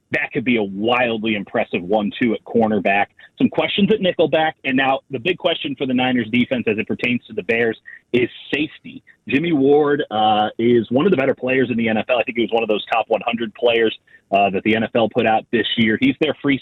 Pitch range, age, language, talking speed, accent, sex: 120-165 Hz, 30-49, English, 230 wpm, American, male